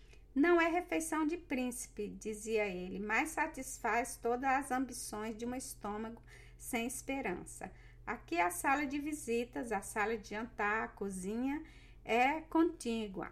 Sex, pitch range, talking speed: female, 220-275 Hz, 135 wpm